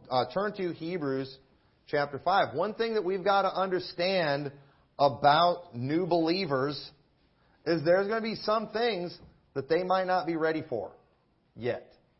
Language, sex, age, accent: English, male, 40-59, American